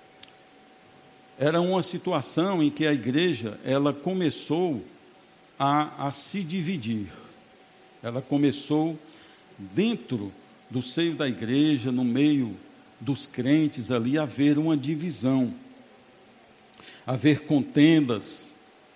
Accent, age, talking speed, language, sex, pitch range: Brazilian, 60-79, 100 wpm, Portuguese, male, 130-180 Hz